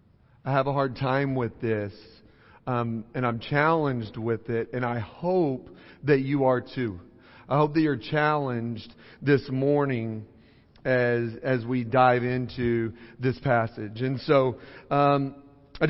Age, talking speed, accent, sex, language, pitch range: 40-59, 145 wpm, American, male, English, 120-145 Hz